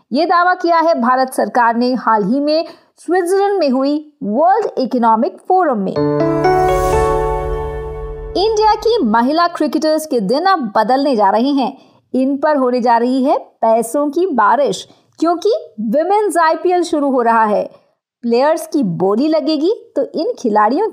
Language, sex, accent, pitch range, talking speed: Hindi, female, native, 225-330 Hz, 145 wpm